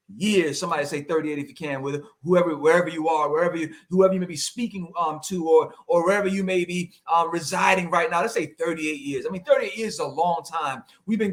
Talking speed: 235 wpm